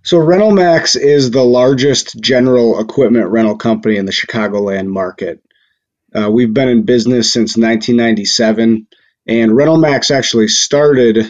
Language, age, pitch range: English, 30-49, 105-120 Hz